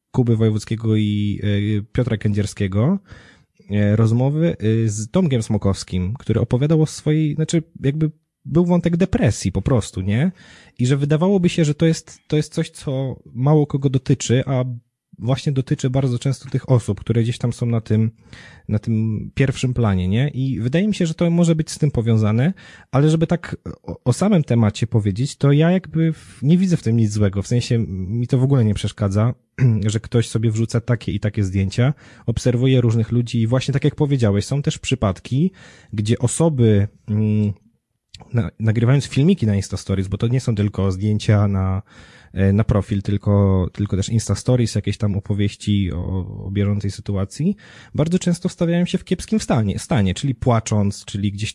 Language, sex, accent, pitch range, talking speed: Polish, male, native, 105-140 Hz, 175 wpm